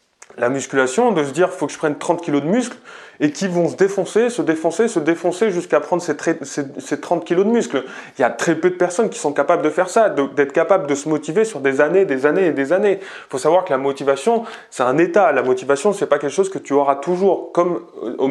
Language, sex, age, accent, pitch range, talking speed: French, male, 20-39, French, 145-200 Hz, 260 wpm